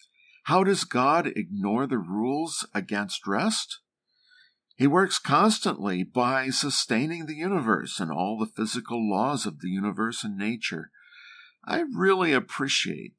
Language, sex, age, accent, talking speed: English, male, 50-69, American, 125 wpm